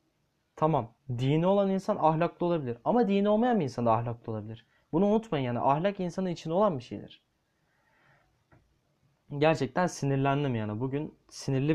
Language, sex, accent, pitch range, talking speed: Turkish, male, native, 135-190 Hz, 145 wpm